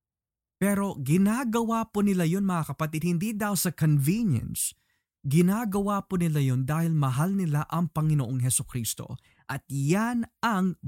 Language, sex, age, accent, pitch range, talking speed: Filipino, male, 20-39, native, 135-195 Hz, 140 wpm